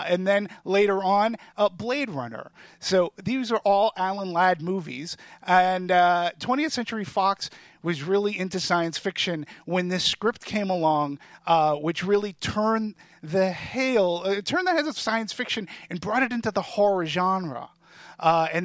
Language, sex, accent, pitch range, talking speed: English, male, American, 170-215 Hz, 165 wpm